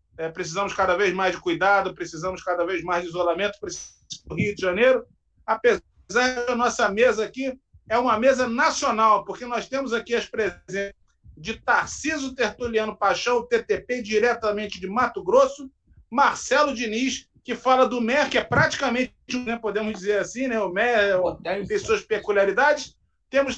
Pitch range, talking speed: 210-265 Hz, 155 wpm